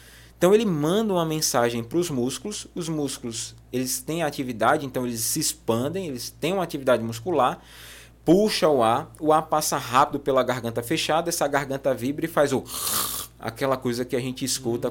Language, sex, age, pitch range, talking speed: Portuguese, male, 20-39, 110-155 Hz, 175 wpm